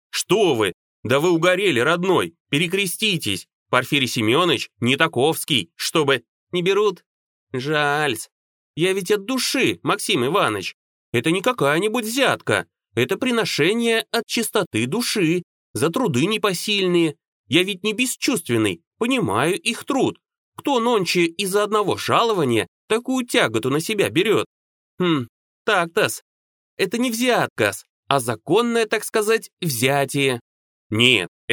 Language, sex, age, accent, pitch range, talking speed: Russian, male, 30-49, native, 145-225 Hz, 120 wpm